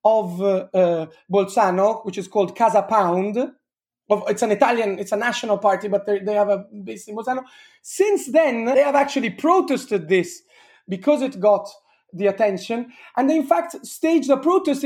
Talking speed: 170 wpm